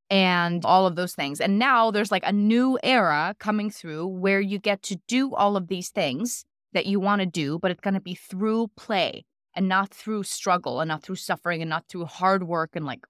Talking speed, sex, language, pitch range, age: 230 wpm, female, English, 175-220 Hz, 20-39